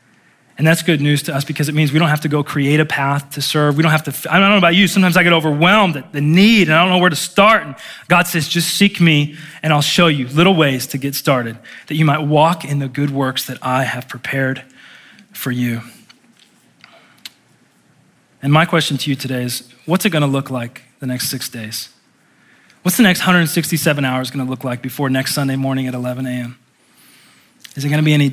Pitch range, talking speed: 140-175 Hz, 235 wpm